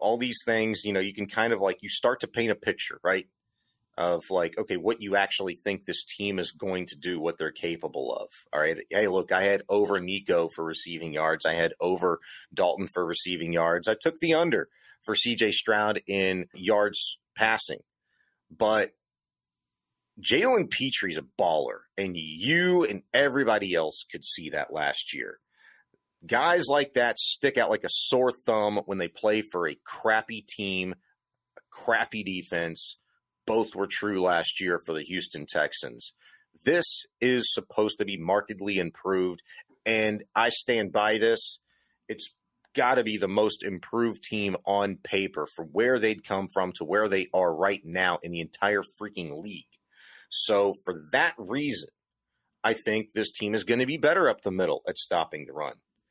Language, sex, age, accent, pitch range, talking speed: English, male, 30-49, American, 90-110 Hz, 175 wpm